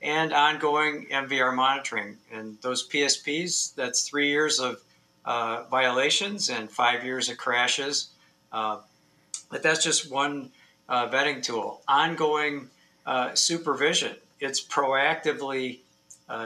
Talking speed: 115 wpm